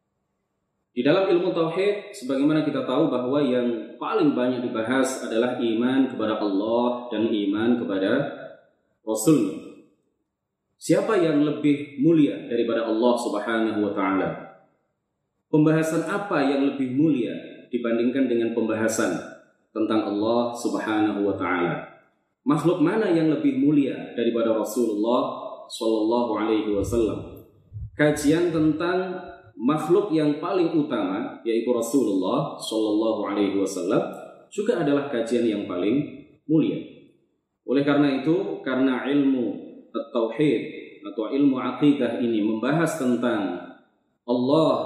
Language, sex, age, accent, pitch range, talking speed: Indonesian, male, 30-49, native, 115-150 Hz, 105 wpm